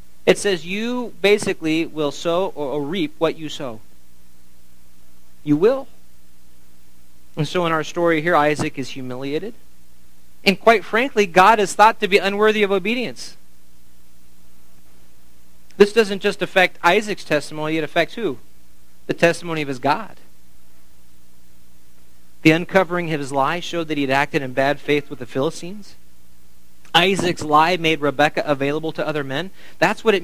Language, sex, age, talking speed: English, male, 40-59, 145 wpm